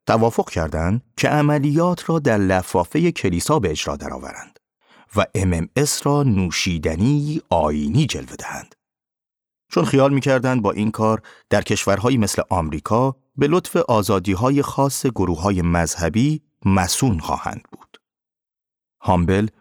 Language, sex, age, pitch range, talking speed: Persian, male, 30-49, 90-130 Hz, 120 wpm